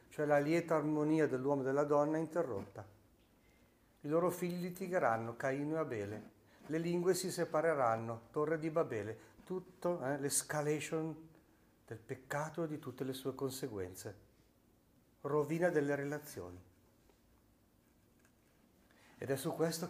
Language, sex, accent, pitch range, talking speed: Italian, male, native, 110-140 Hz, 125 wpm